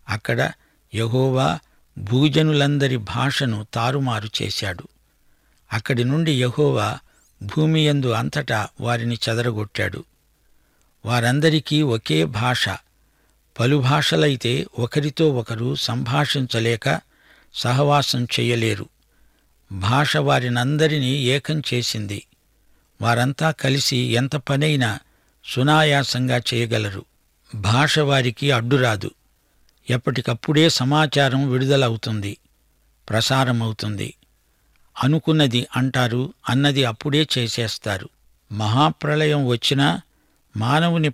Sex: male